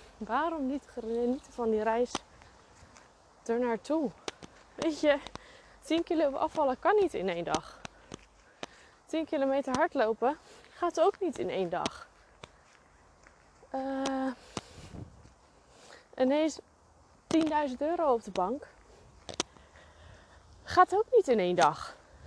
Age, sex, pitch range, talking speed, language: 20-39, female, 190-275 Hz, 110 wpm, Dutch